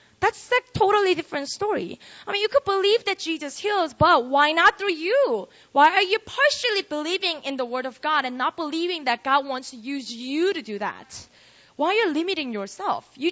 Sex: female